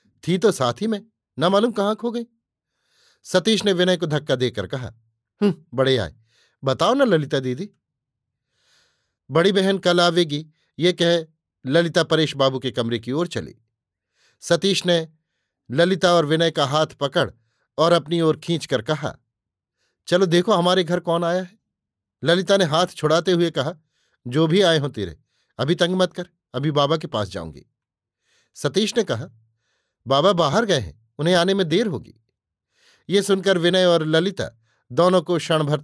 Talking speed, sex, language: 165 wpm, male, Hindi